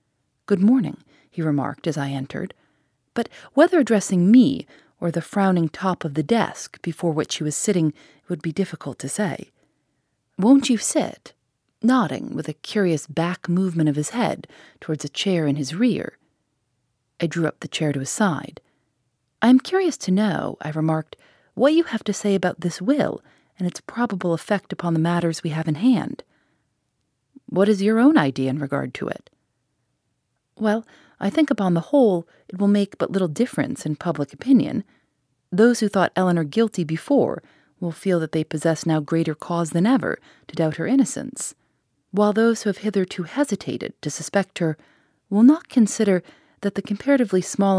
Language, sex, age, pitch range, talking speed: English, female, 30-49, 155-220 Hz, 175 wpm